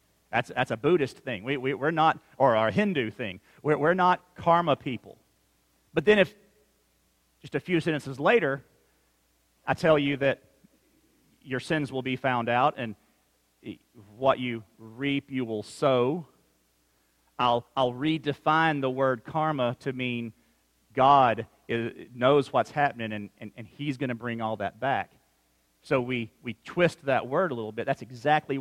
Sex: male